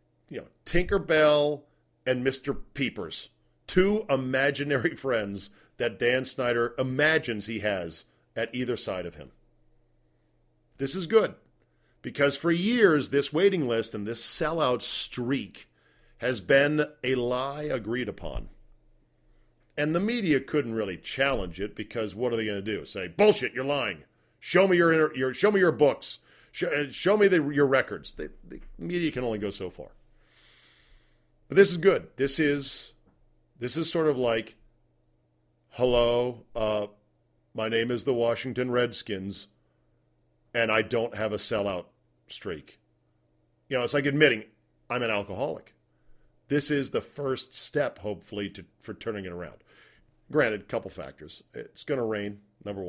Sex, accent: male, American